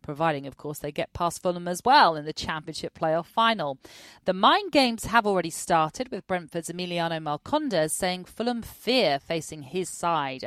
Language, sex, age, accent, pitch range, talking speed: English, female, 40-59, British, 155-230 Hz, 170 wpm